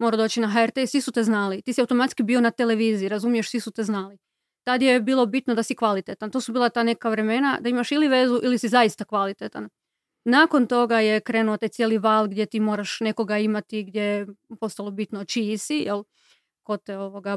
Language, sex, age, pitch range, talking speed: Croatian, female, 30-49, 215-250 Hz, 210 wpm